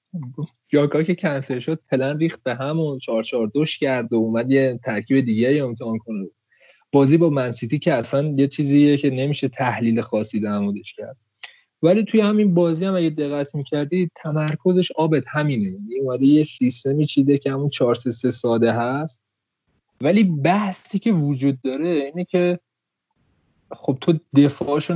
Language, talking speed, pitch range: Persian, 145 wpm, 120-160 Hz